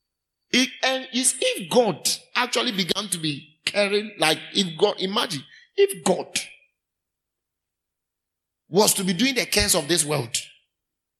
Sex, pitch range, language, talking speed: male, 160-230 Hz, English, 135 wpm